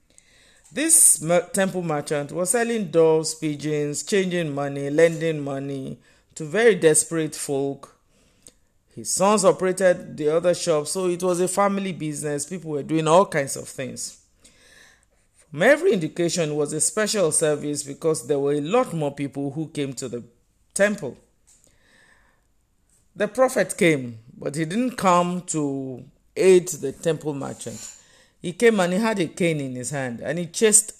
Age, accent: 50-69, Nigerian